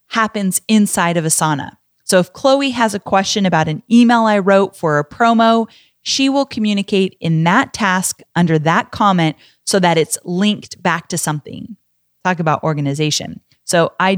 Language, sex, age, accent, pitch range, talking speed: English, female, 30-49, American, 165-220 Hz, 165 wpm